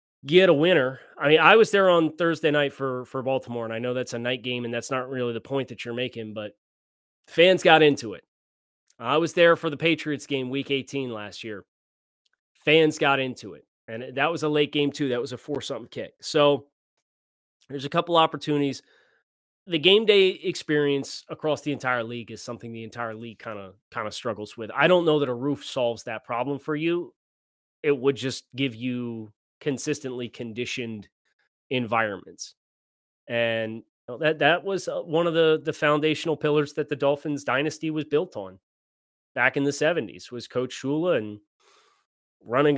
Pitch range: 115-155 Hz